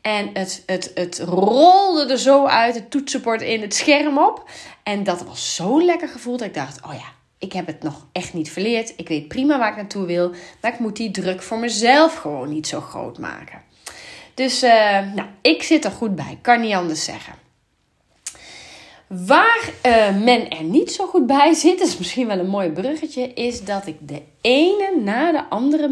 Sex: female